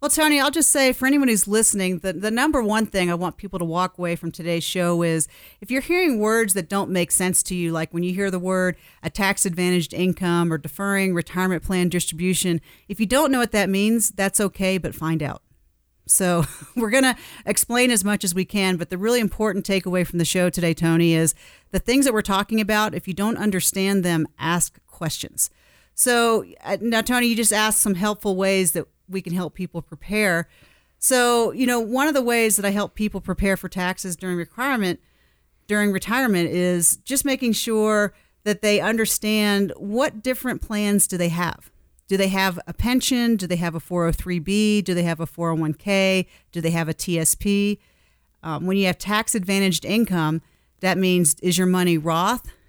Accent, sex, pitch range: American, female, 175-215 Hz